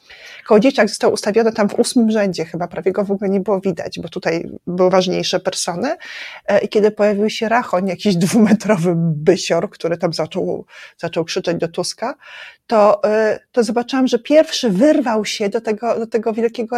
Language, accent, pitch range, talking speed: Polish, native, 195-260 Hz, 170 wpm